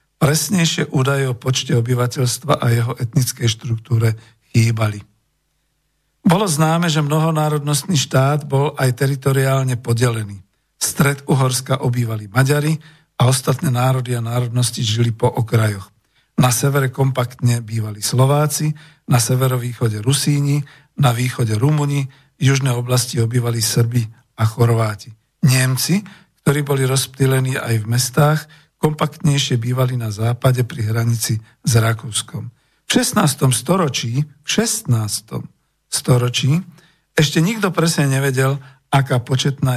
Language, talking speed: Slovak, 115 wpm